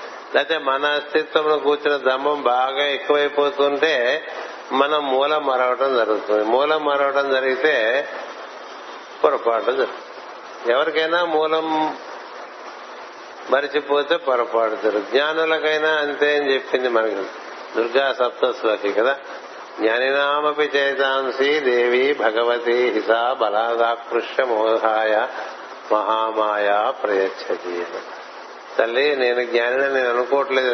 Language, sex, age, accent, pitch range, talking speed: Telugu, male, 60-79, native, 115-140 Hz, 85 wpm